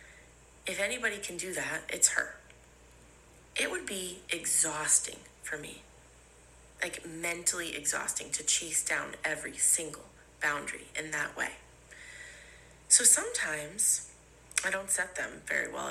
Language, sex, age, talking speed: English, female, 30-49, 125 wpm